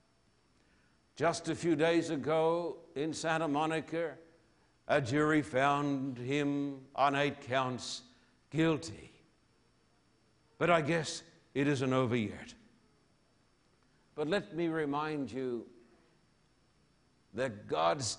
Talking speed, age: 100 wpm, 60-79